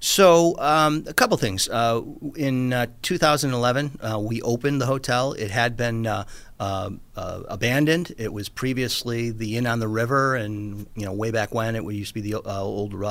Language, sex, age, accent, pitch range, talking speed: English, male, 40-59, American, 105-125 Hz, 190 wpm